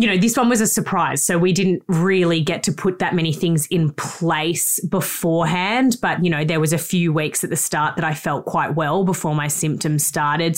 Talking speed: 225 wpm